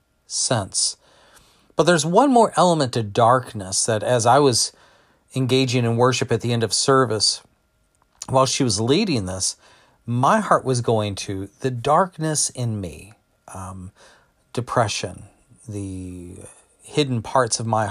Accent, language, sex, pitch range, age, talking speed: American, English, male, 100-130 Hz, 40-59, 135 wpm